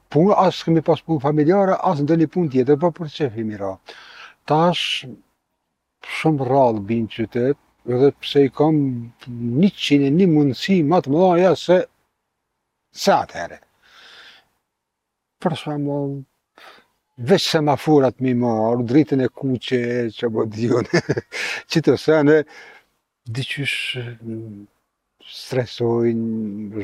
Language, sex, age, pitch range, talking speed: English, male, 60-79, 115-140 Hz, 40 wpm